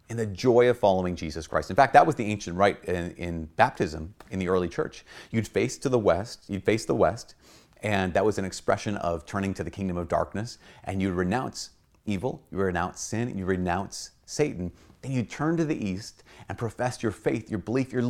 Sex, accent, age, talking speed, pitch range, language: male, American, 30-49, 215 wpm, 90-125 Hz, English